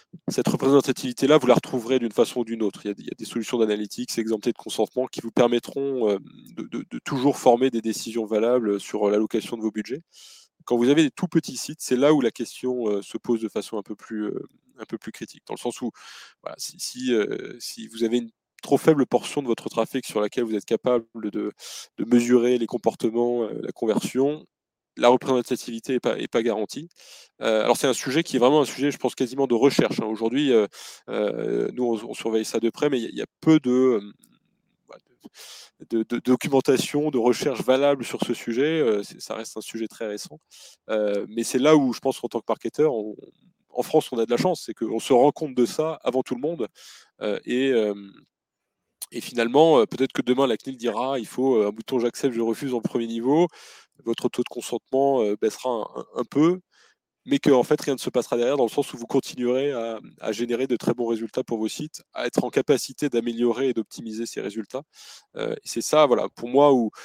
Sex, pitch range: male, 115-135 Hz